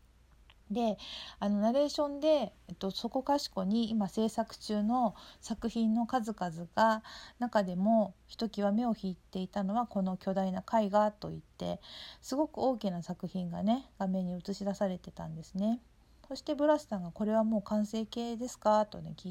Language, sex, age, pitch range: Japanese, female, 50-69, 185-230 Hz